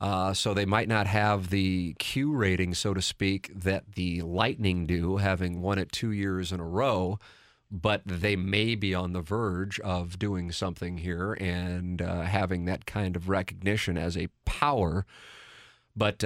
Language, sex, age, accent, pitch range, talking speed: English, male, 40-59, American, 95-130 Hz, 170 wpm